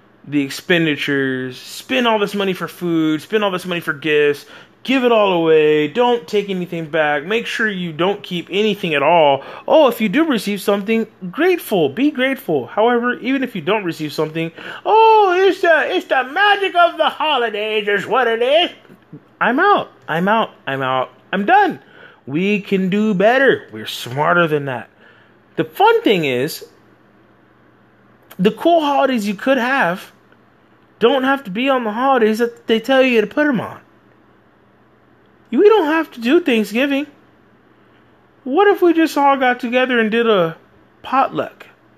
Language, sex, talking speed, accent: English, male, 165 wpm, American